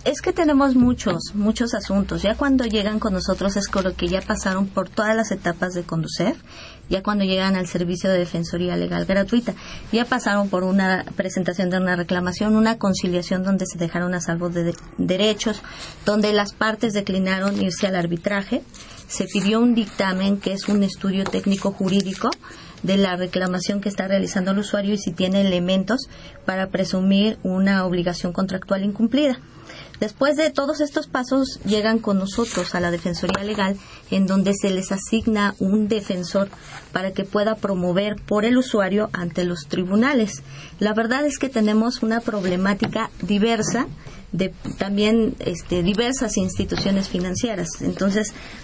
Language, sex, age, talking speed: Spanish, female, 30-49, 160 wpm